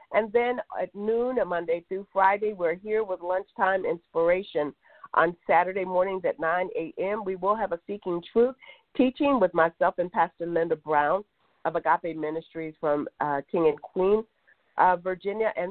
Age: 50-69